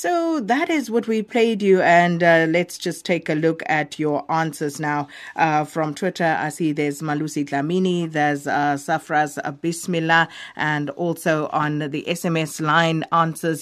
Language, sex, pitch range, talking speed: English, female, 155-185 Hz, 165 wpm